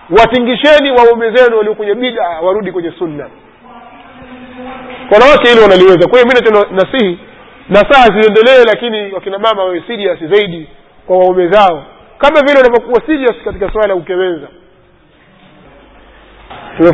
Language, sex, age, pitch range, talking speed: Swahili, male, 30-49, 185-245 Hz, 130 wpm